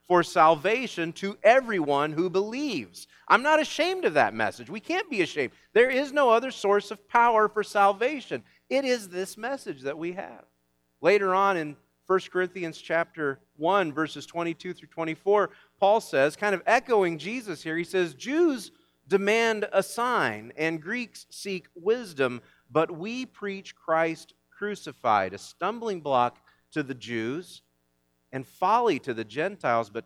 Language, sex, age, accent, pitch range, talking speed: English, male, 40-59, American, 150-210 Hz, 155 wpm